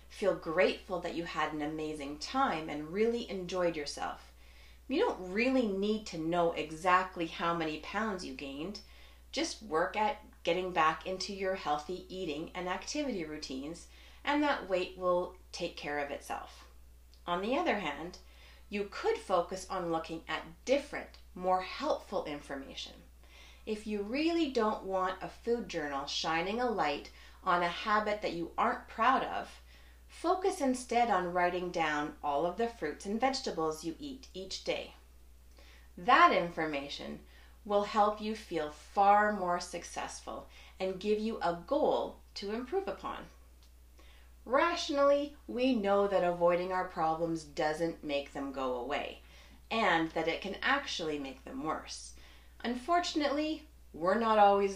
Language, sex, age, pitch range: English, female, 30-49, 150-215 Hz